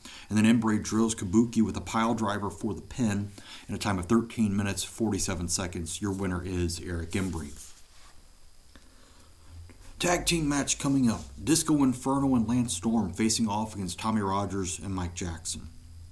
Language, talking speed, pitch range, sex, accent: English, 160 wpm, 90-125 Hz, male, American